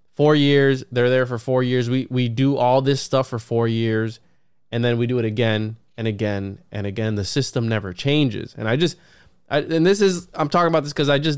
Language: English